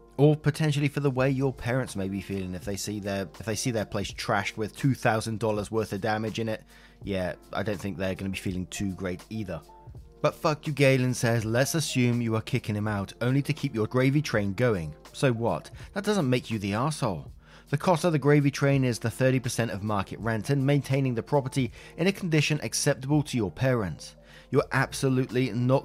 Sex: male